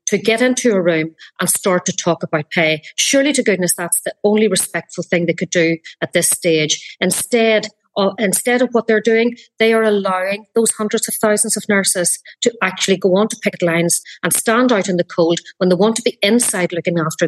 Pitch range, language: 180-225 Hz, English